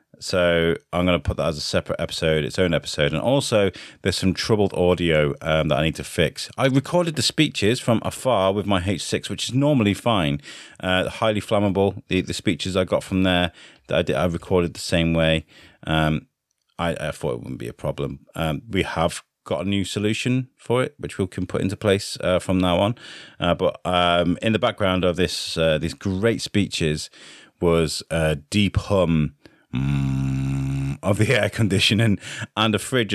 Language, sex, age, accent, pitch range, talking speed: English, male, 30-49, British, 80-100 Hz, 195 wpm